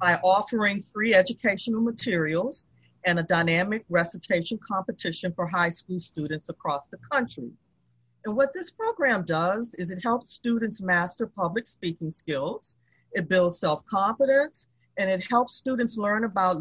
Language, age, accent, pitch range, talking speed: English, 40-59, American, 170-235 Hz, 140 wpm